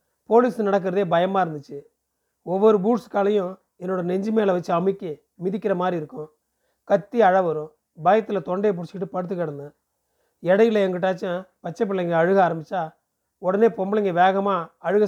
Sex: male